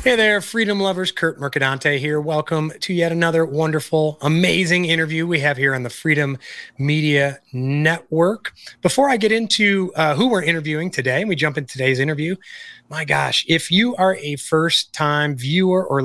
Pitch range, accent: 145-180 Hz, American